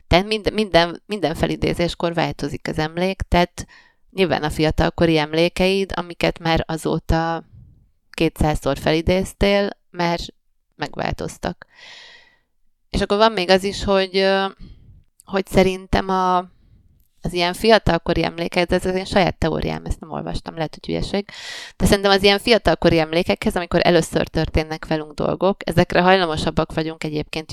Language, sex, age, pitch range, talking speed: Hungarian, female, 30-49, 155-195 Hz, 130 wpm